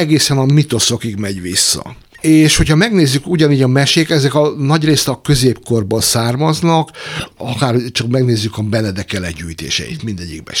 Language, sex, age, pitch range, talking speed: Hungarian, male, 60-79, 110-150 Hz, 130 wpm